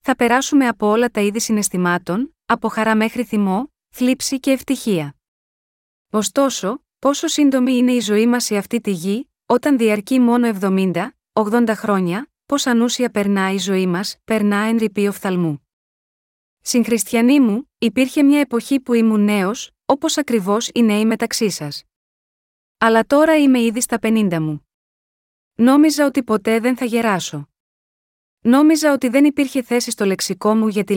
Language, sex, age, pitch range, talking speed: Greek, female, 20-39, 205-250 Hz, 150 wpm